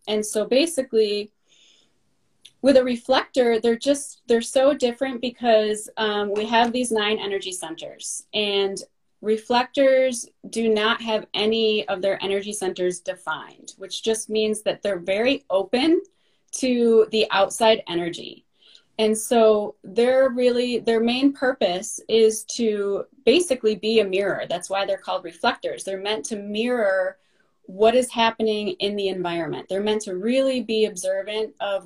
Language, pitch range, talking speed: English, 195-245 Hz, 145 wpm